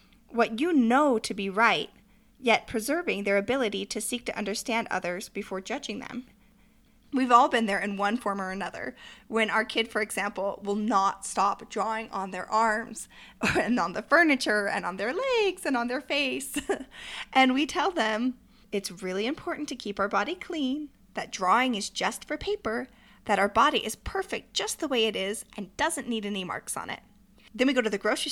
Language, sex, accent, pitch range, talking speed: English, female, American, 205-280 Hz, 195 wpm